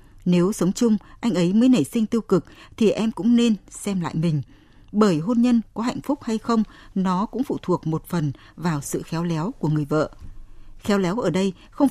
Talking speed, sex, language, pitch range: 215 wpm, female, Vietnamese, 155-225 Hz